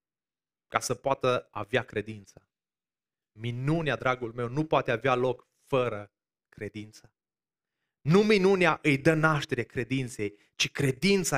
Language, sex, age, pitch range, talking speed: Romanian, male, 20-39, 125-175 Hz, 115 wpm